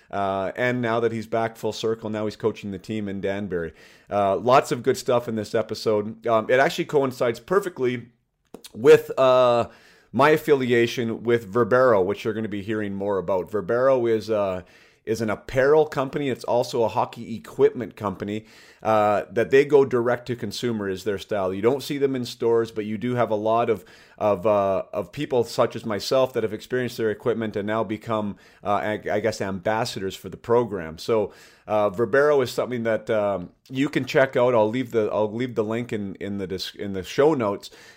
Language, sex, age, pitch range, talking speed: English, male, 40-59, 105-125 Hz, 200 wpm